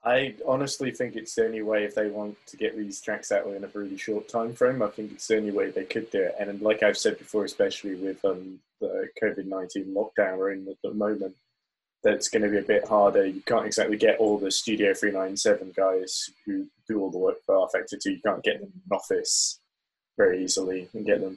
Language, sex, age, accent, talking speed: English, male, 20-39, British, 240 wpm